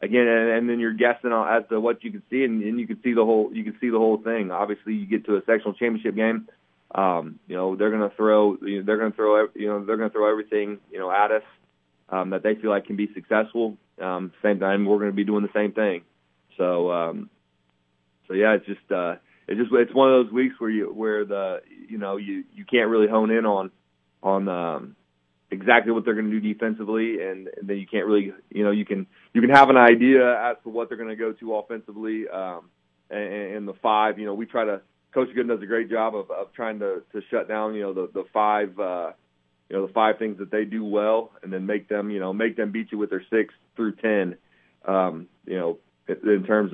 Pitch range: 95-115 Hz